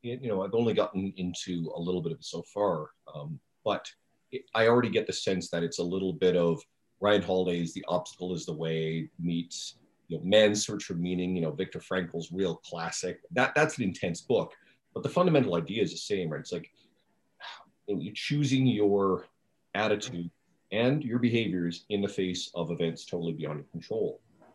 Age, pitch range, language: 40-59, 85-105 Hz, English